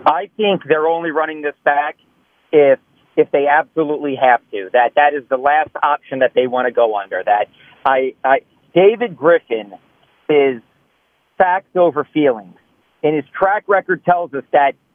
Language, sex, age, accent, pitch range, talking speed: English, male, 50-69, American, 150-200 Hz, 165 wpm